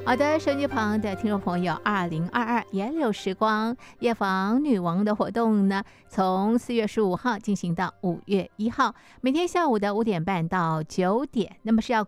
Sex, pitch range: female, 190-235 Hz